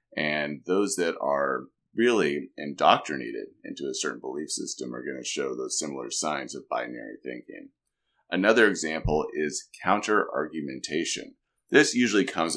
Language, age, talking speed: English, 30-49, 135 wpm